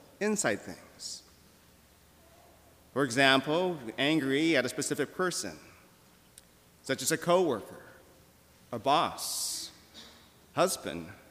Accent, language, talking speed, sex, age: American, English, 85 wpm, male, 40-59